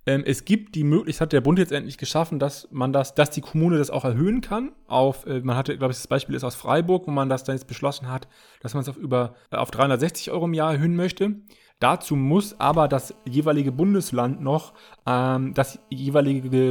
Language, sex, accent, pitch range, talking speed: English, male, German, 125-155 Hz, 210 wpm